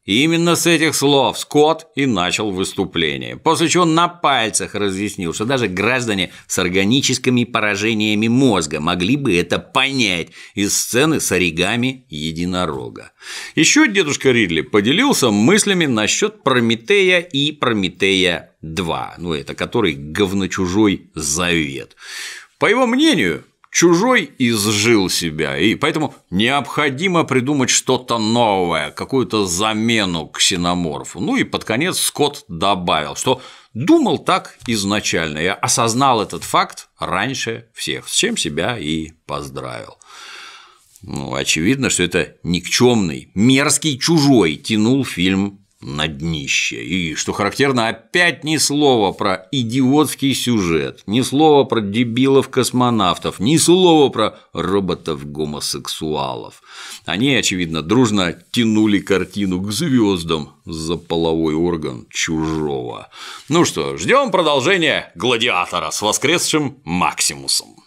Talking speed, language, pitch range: 110 wpm, Russian, 90-140 Hz